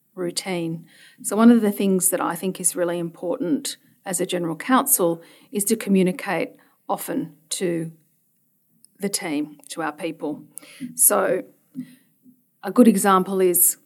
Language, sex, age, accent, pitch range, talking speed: English, female, 40-59, Australian, 170-230 Hz, 135 wpm